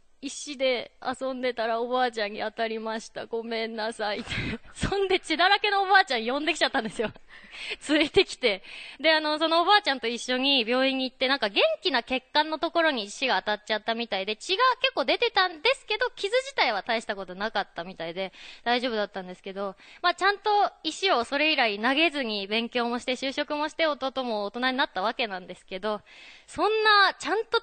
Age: 20-39